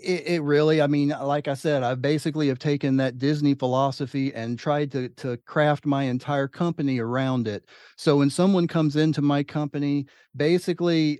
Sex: male